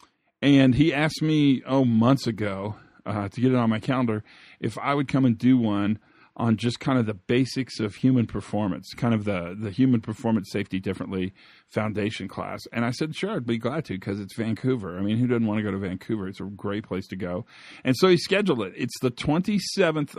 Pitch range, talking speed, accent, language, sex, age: 105-135 Hz, 220 wpm, American, English, male, 40-59